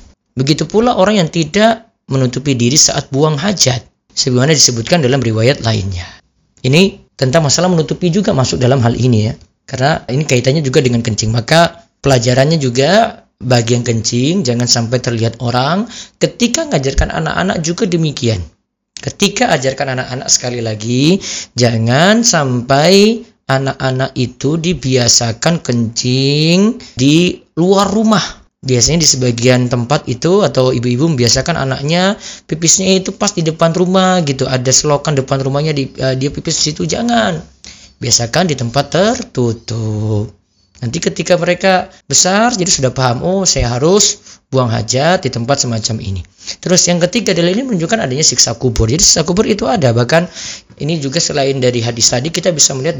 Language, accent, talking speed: Indonesian, native, 145 wpm